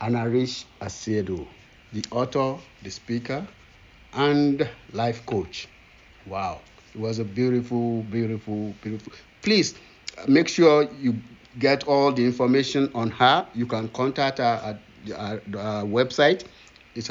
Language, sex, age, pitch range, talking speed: English, male, 60-79, 110-140 Hz, 135 wpm